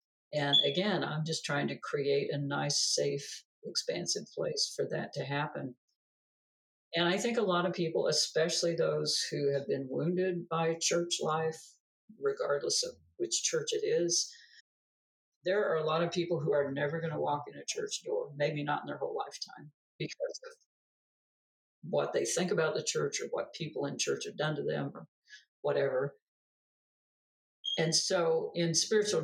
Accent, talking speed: American, 170 wpm